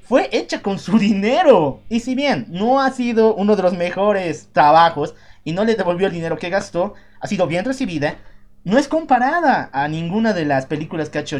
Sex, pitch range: male, 170-245 Hz